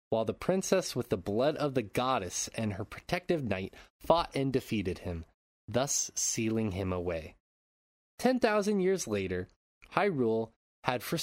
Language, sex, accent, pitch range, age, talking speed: English, male, American, 100-160 Hz, 20-39, 150 wpm